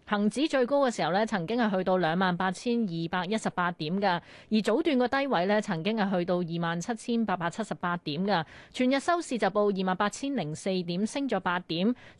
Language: Chinese